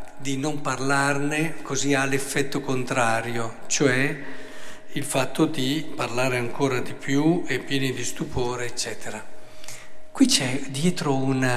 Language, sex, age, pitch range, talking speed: Italian, male, 50-69, 135-180 Hz, 125 wpm